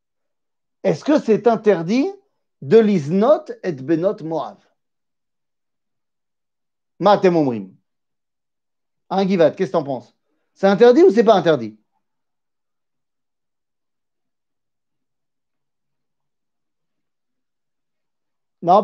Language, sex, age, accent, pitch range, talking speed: French, male, 50-69, French, 160-220 Hz, 85 wpm